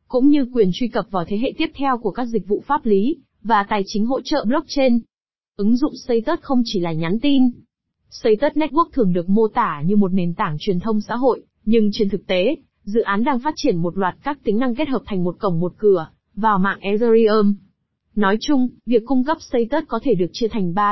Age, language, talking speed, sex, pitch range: 20-39, Vietnamese, 230 wpm, female, 200-250 Hz